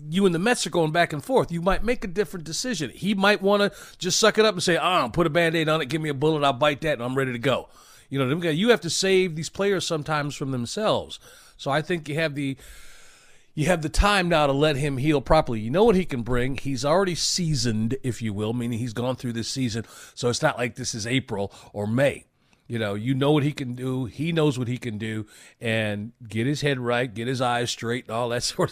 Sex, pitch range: male, 125-170 Hz